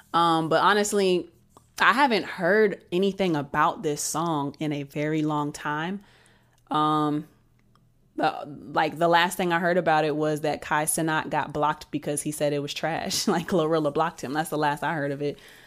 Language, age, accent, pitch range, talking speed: English, 20-39, American, 150-185 Hz, 185 wpm